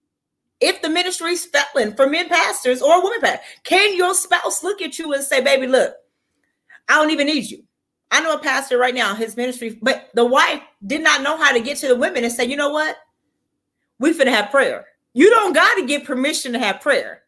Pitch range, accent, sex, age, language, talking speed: 185-300 Hz, American, female, 40-59, English, 215 wpm